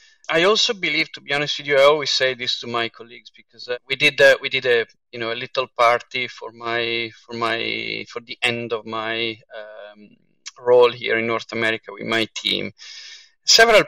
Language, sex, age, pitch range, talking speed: English, male, 40-59, 120-155 Hz, 205 wpm